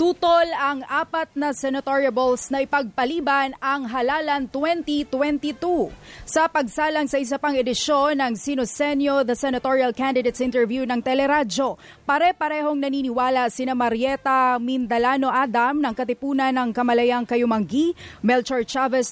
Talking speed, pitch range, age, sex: 115 wpm, 245-290 Hz, 20-39, female